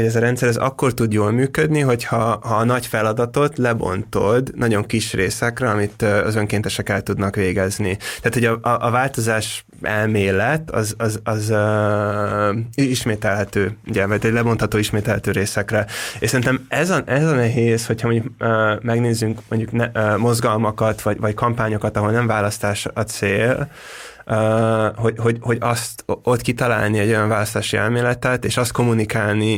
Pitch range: 105-120 Hz